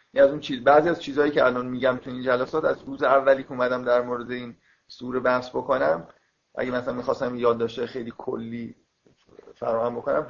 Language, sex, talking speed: Persian, male, 180 wpm